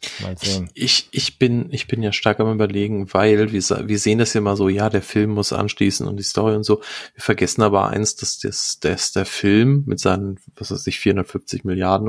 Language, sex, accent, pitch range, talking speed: German, male, German, 100-125 Hz, 215 wpm